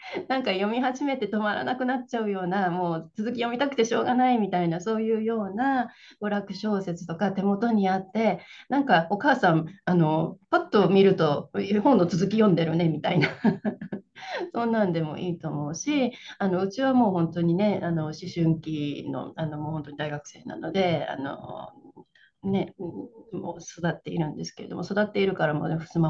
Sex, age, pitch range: female, 30-49, 160-220 Hz